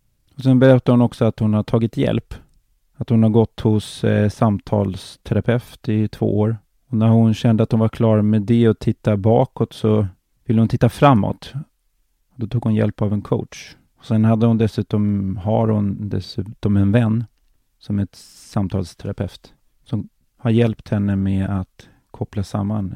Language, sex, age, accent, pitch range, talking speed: English, male, 30-49, Swedish, 100-115 Hz, 175 wpm